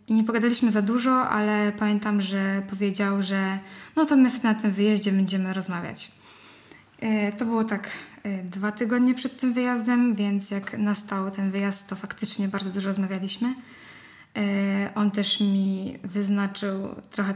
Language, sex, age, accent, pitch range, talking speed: Polish, female, 10-29, native, 195-220 Hz, 140 wpm